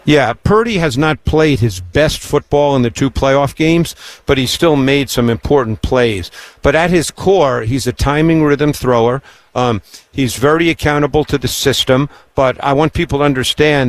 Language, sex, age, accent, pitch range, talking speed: English, male, 50-69, American, 125-160 Hz, 180 wpm